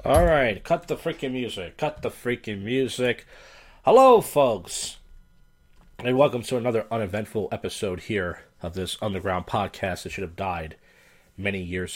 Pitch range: 95-130 Hz